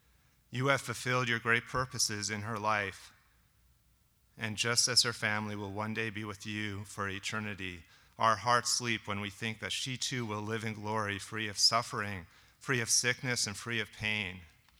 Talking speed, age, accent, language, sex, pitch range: 185 wpm, 30-49, American, English, male, 100-115 Hz